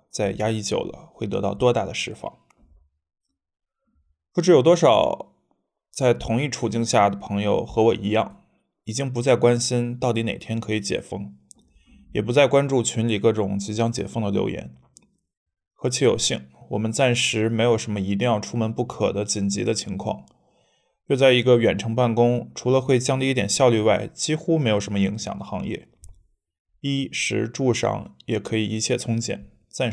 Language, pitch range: Chinese, 100-125 Hz